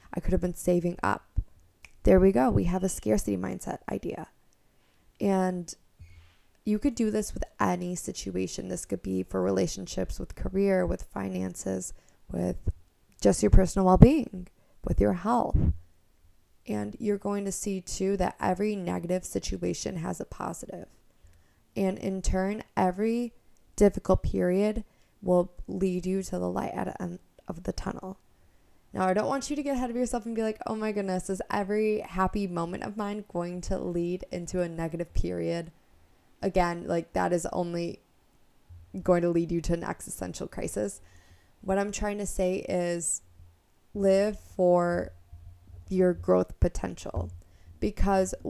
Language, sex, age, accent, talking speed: English, female, 20-39, American, 155 wpm